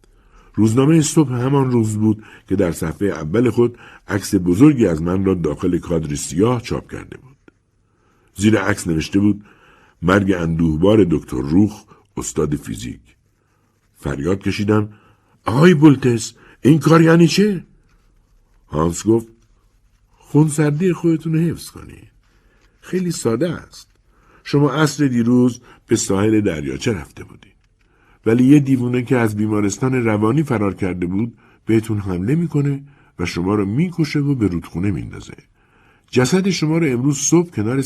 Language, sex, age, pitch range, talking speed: Persian, male, 60-79, 95-135 Hz, 135 wpm